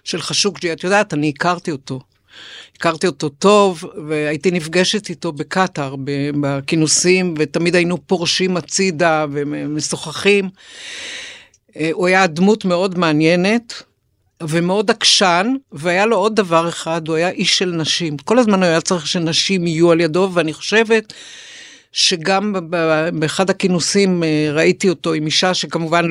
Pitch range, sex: 155-185 Hz, female